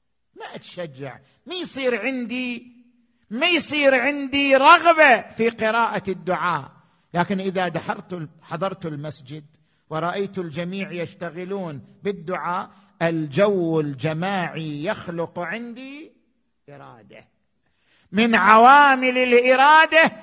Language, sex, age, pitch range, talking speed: Arabic, male, 50-69, 195-275 Hz, 85 wpm